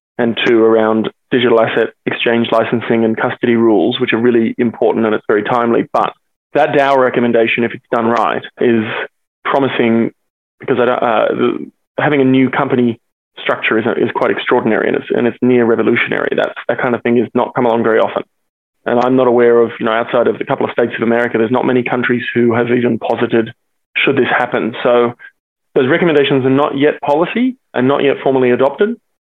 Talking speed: 200 wpm